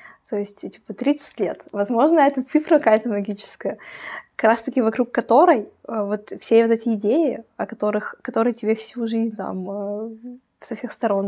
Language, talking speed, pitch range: Russian, 155 wpm, 205-245 Hz